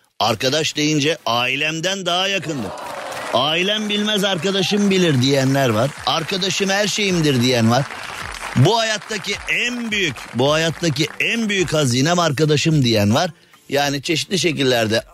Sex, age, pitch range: male, 50-69, 150-240 Hz